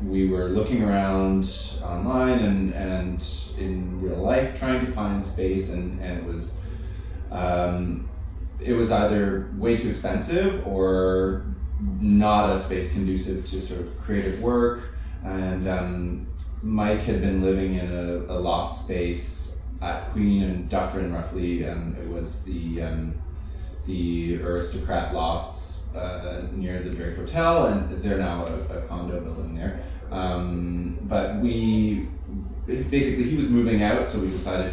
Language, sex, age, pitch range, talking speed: English, male, 20-39, 85-95 Hz, 145 wpm